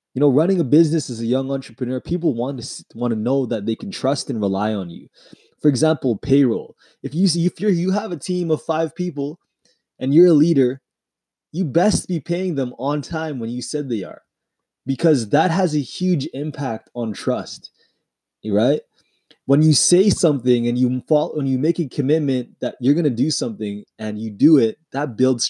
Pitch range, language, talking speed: 125-160 Hz, English, 200 wpm